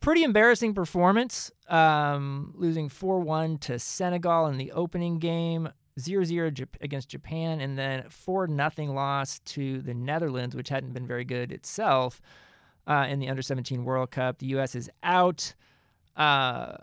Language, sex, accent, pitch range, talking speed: English, male, American, 130-165 Hz, 140 wpm